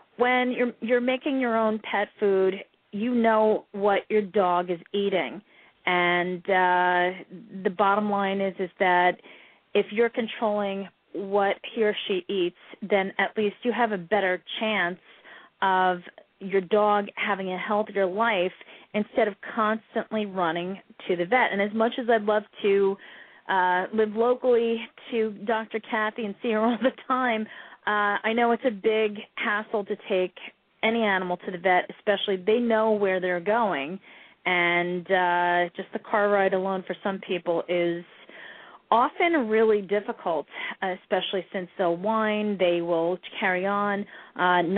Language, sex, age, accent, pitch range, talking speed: English, female, 30-49, American, 185-220 Hz, 155 wpm